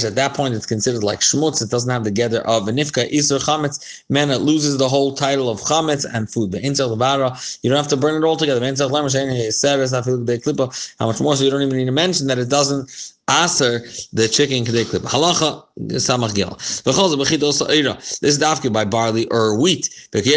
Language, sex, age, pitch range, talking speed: English, male, 30-49, 115-150 Hz, 205 wpm